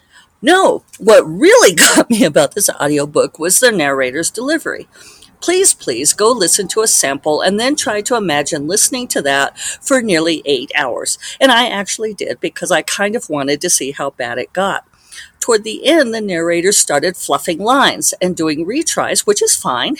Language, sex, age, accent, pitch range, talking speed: English, female, 50-69, American, 155-245 Hz, 180 wpm